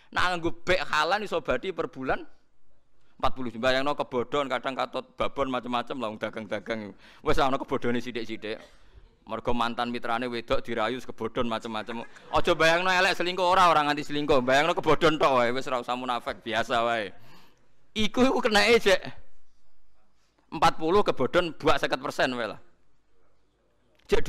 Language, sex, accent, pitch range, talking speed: Indonesian, male, native, 125-185 Hz, 140 wpm